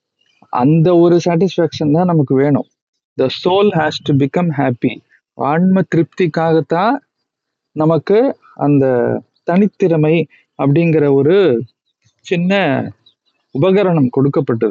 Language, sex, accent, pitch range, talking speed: Tamil, male, native, 145-185 Hz, 80 wpm